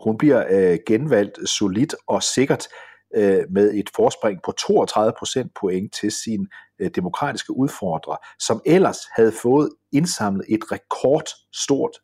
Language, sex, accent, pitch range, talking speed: Danish, male, native, 100-145 Hz, 135 wpm